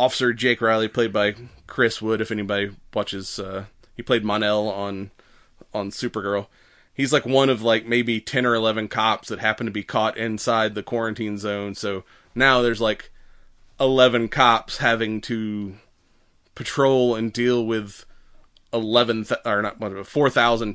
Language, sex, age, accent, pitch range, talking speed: English, male, 30-49, American, 105-125 Hz, 150 wpm